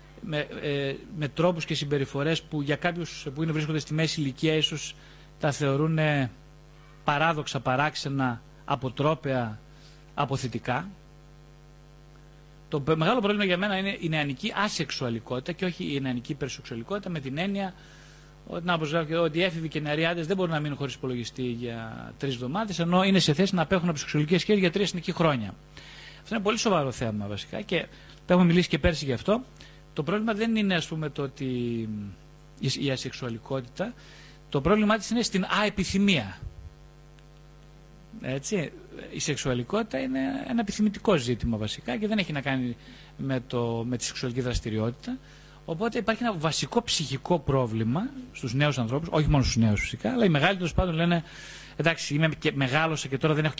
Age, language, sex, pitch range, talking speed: 30-49, Greek, male, 135-170 Hz, 165 wpm